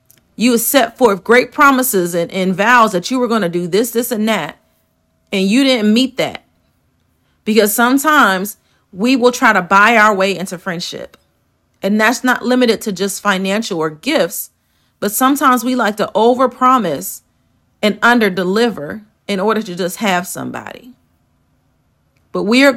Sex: female